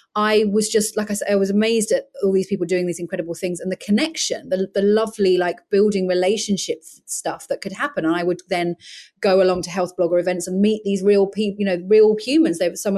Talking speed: 240 wpm